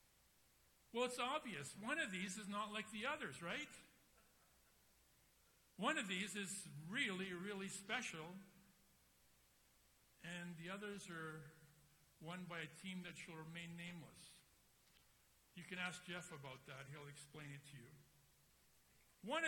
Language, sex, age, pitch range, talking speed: English, male, 60-79, 160-225 Hz, 130 wpm